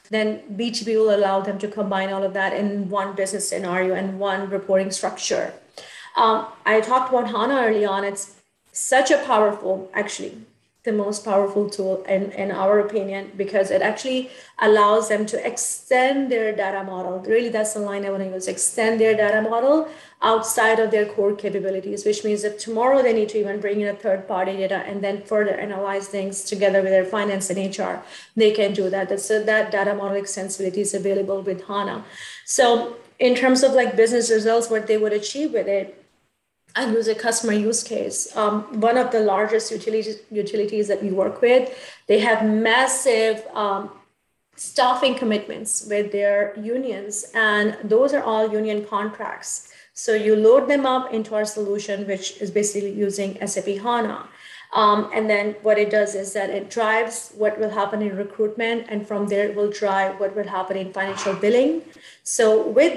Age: 30-49